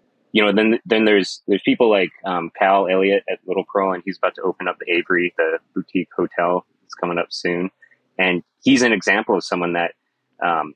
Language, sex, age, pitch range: English, male, 30-49, 85-100 Hz